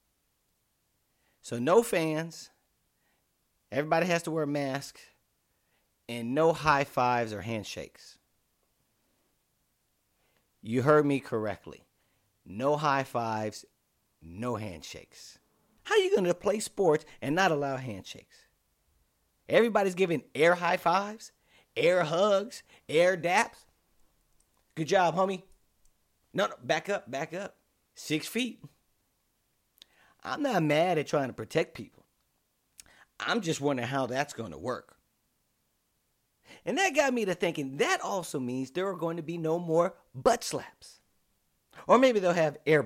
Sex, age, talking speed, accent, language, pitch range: male, 40-59, 130 wpm, American, English, 135-195 Hz